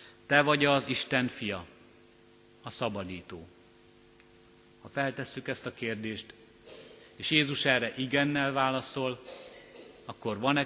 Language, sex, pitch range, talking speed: Hungarian, male, 100-130 Hz, 105 wpm